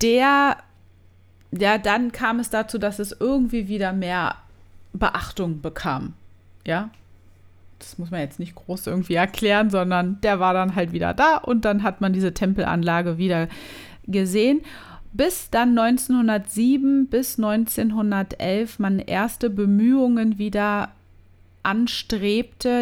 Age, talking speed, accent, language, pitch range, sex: 30-49, 125 wpm, German, German, 165-210 Hz, female